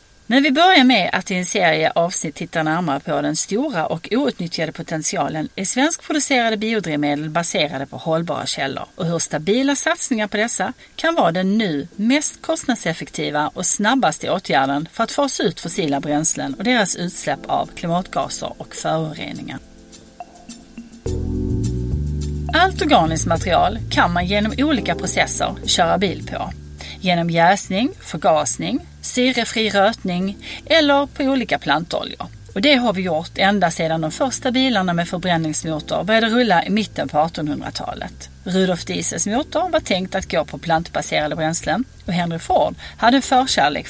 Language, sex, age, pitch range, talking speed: Swedish, female, 40-59, 160-250 Hz, 145 wpm